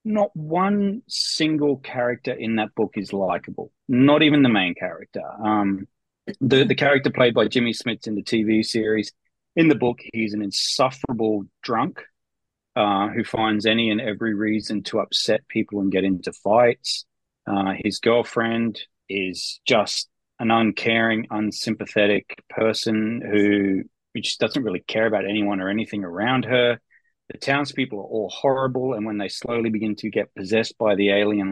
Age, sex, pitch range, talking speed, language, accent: 30-49, male, 100-120 Hz, 160 wpm, English, Australian